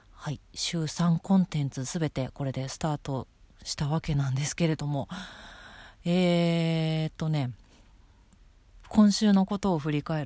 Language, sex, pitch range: Japanese, female, 145-180 Hz